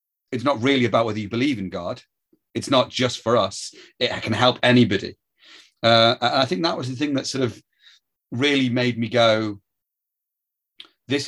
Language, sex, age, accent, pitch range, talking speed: English, male, 30-49, British, 100-120 Hz, 180 wpm